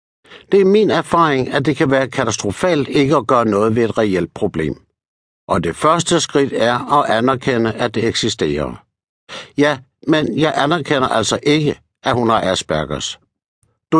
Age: 60-79